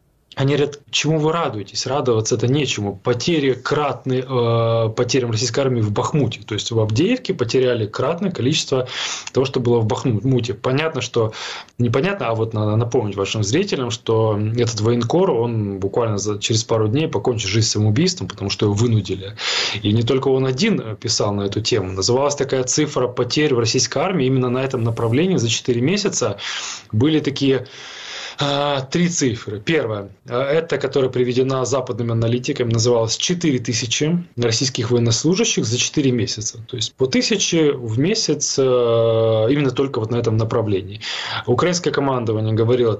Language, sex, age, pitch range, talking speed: Ukrainian, male, 20-39, 115-140 Hz, 150 wpm